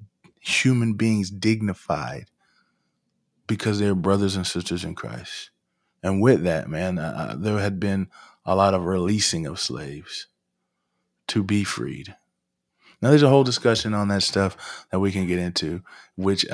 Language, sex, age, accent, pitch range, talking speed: English, male, 20-39, American, 95-110 Hz, 145 wpm